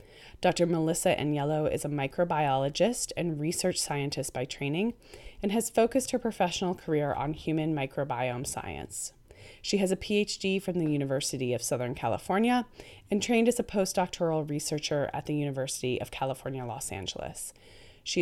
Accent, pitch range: American, 140-185 Hz